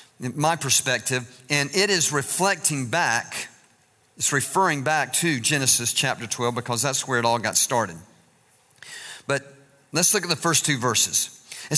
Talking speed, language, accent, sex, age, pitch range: 155 wpm, English, American, male, 50-69, 145-190 Hz